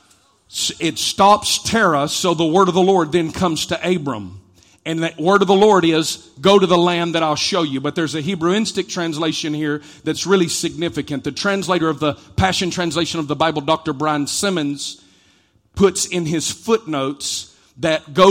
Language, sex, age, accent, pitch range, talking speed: English, male, 40-59, American, 155-190 Hz, 180 wpm